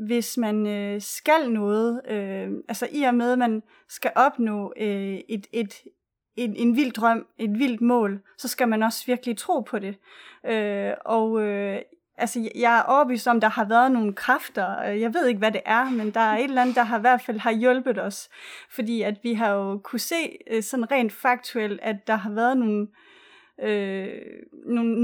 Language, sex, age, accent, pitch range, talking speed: Danish, female, 30-49, native, 220-255 Hz, 180 wpm